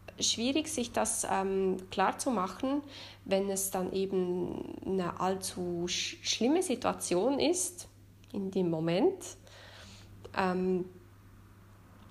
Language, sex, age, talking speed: German, female, 20-39, 95 wpm